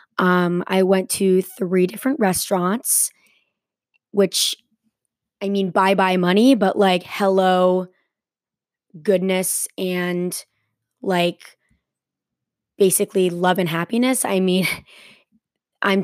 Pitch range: 180-215 Hz